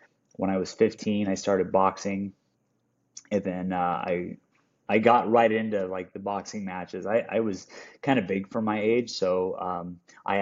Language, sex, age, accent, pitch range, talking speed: English, male, 20-39, American, 90-110 Hz, 180 wpm